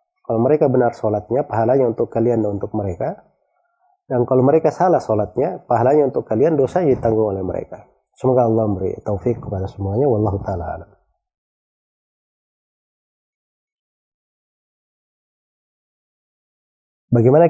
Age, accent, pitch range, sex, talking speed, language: 30-49, native, 105-145 Hz, male, 105 wpm, Indonesian